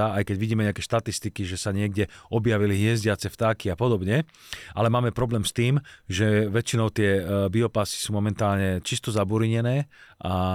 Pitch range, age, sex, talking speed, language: 100-120 Hz, 40-59, male, 155 wpm, Slovak